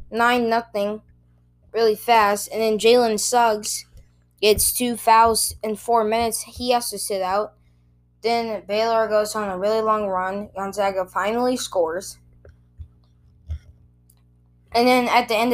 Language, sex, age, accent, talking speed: English, female, 10-29, American, 135 wpm